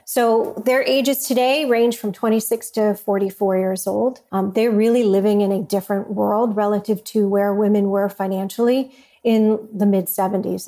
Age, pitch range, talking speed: 40-59, 200-240 Hz, 155 wpm